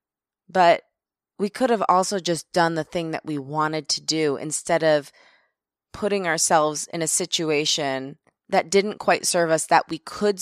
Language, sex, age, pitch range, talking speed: English, female, 20-39, 155-200 Hz, 165 wpm